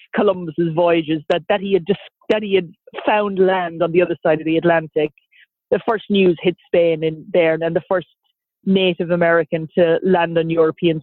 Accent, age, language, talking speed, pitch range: Irish, 30-49, English, 195 wpm, 170-210 Hz